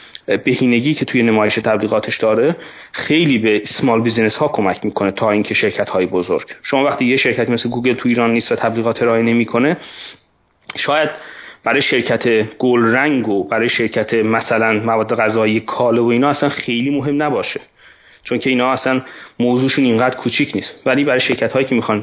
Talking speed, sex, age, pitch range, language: 170 wpm, male, 30-49, 115-150 Hz, Persian